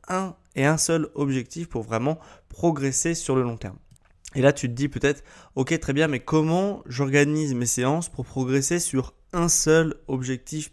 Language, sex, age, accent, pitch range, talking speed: French, male, 20-39, French, 115-150 Hz, 180 wpm